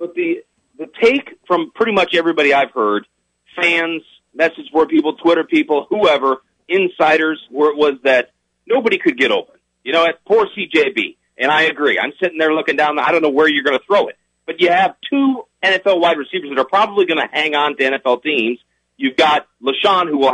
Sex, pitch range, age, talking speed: male, 140-215 Hz, 40-59, 205 wpm